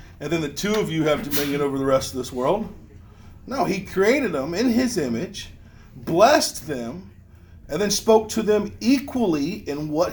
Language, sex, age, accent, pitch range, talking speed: English, male, 40-59, American, 95-155 Hz, 185 wpm